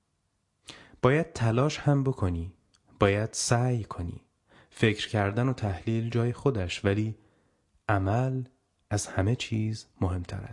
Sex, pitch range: male, 95-125 Hz